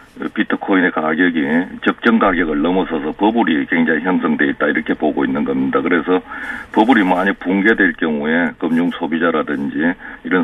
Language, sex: Korean, male